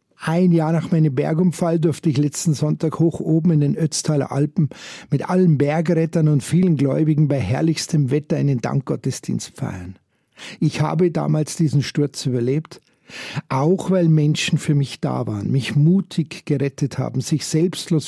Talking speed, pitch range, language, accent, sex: 155 wpm, 140-170 Hz, German, Austrian, male